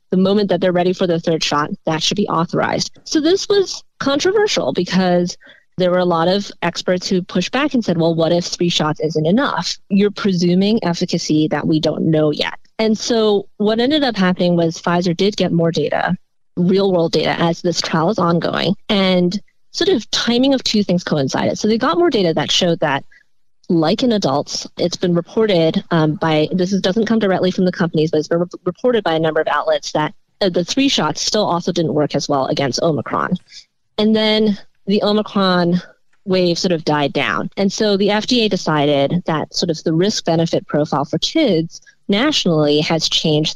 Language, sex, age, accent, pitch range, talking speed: English, female, 30-49, American, 160-205 Hz, 195 wpm